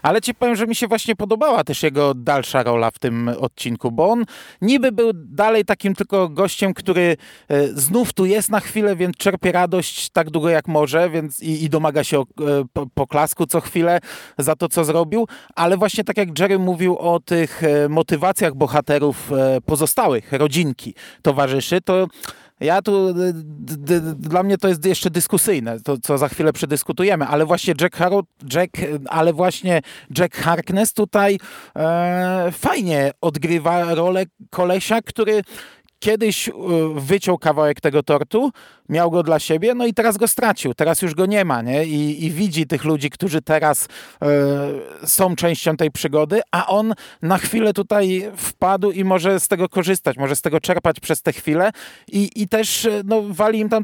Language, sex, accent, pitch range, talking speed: Polish, male, native, 145-195 Hz, 160 wpm